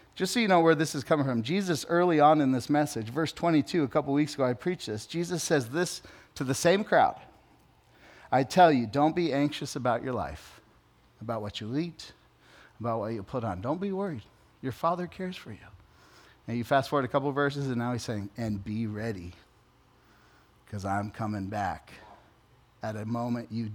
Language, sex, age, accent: English, male, 40-59, American